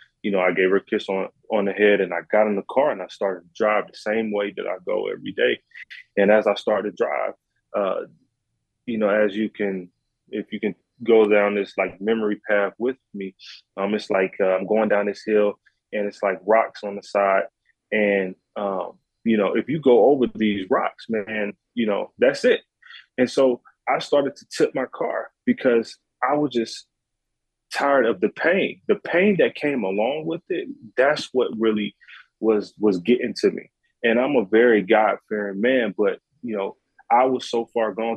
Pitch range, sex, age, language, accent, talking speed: 100-115 Hz, male, 20-39, English, American, 205 wpm